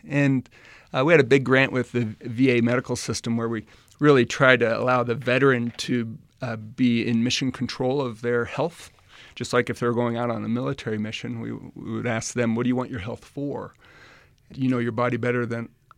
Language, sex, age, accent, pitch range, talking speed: English, male, 40-59, American, 115-130 Hz, 220 wpm